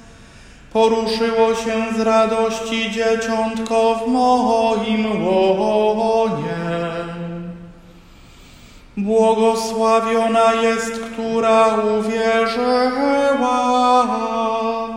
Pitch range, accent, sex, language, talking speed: 225-230 Hz, native, male, Polish, 50 wpm